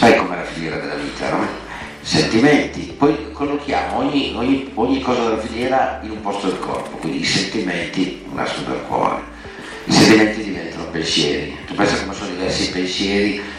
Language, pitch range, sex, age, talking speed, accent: Italian, 90-110 Hz, male, 50-69, 165 wpm, native